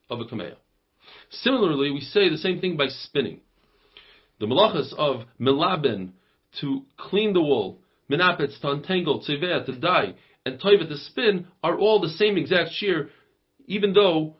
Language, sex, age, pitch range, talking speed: English, male, 40-59, 140-200 Hz, 155 wpm